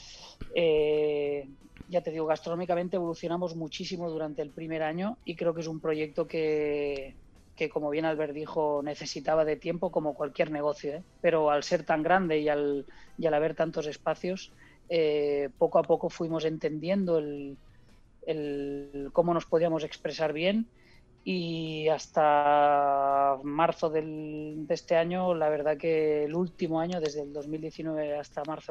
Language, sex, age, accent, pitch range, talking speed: Spanish, female, 20-39, Spanish, 150-170 Hz, 155 wpm